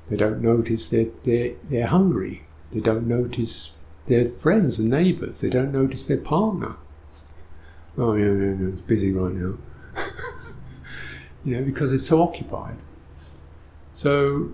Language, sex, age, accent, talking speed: English, male, 50-69, British, 145 wpm